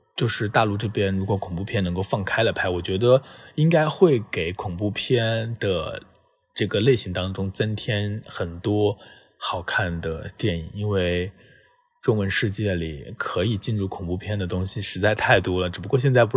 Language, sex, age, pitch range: Chinese, male, 20-39, 95-130 Hz